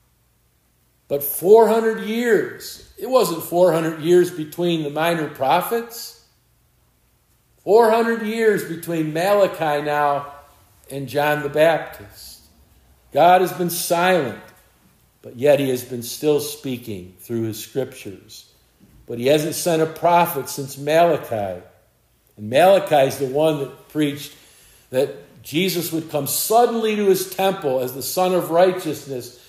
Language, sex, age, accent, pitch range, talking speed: English, male, 50-69, American, 130-170 Hz, 125 wpm